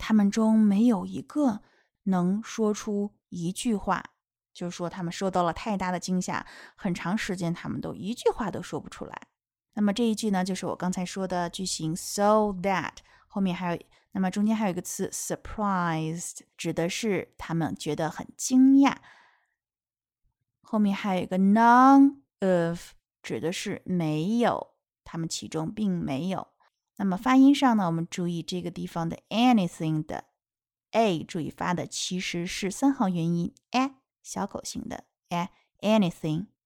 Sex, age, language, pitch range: female, 20-39, Chinese, 175-215 Hz